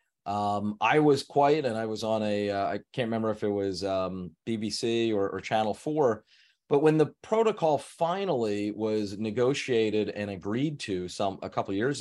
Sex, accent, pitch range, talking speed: male, American, 100-125 Hz, 185 wpm